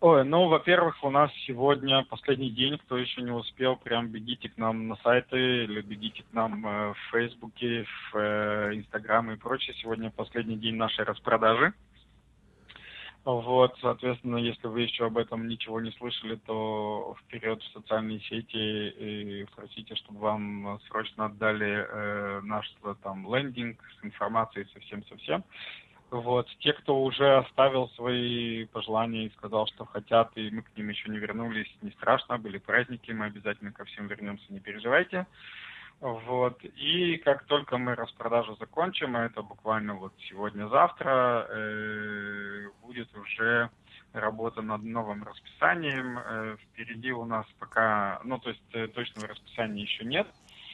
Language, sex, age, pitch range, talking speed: English, male, 20-39, 105-125 Hz, 140 wpm